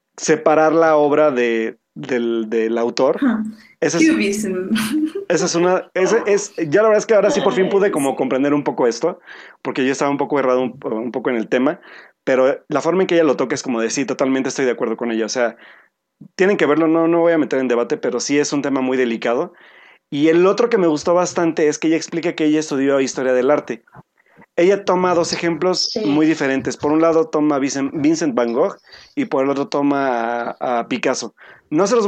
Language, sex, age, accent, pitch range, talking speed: Spanish, male, 30-49, Mexican, 135-175 Hz, 225 wpm